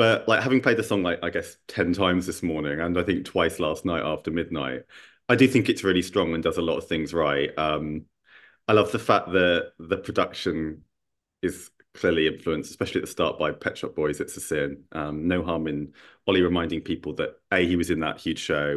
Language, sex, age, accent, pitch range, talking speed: English, male, 30-49, British, 80-100 Hz, 225 wpm